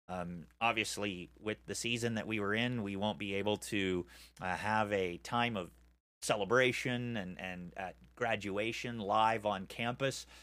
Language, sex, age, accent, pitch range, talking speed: English, male, 30-49, American, 100-130 Hz, 155 wpm